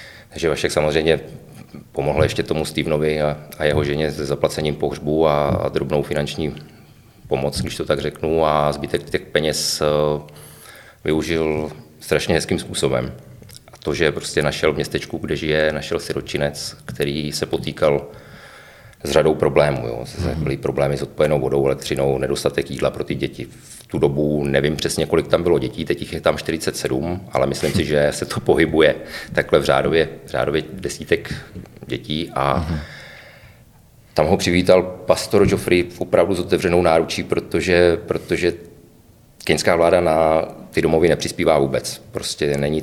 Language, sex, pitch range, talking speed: Czech, male, 70-80 Hz, 155 wpm